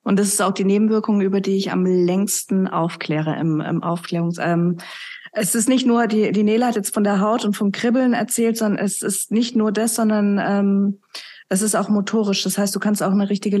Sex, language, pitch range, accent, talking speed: female, German, 195-225 Hz, German, 225 wpm